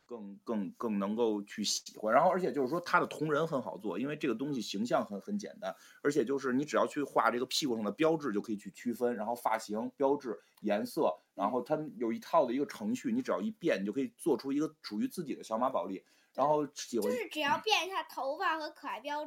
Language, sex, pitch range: Chinese, male, 110-165 Hz